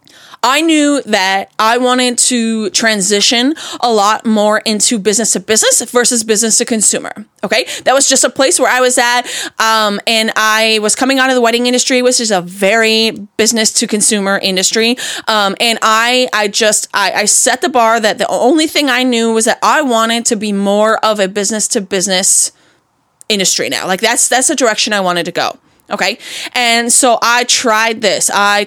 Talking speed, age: 195 wpm, 20-39